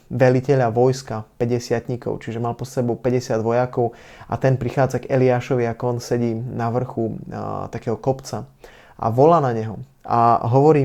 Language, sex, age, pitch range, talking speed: Slovak, male, 20-39, 115-135 Hz, 155 wpm